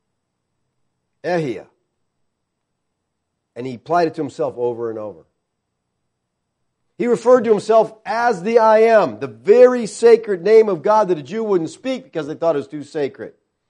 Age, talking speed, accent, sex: 50-69, 155 wpm, American, male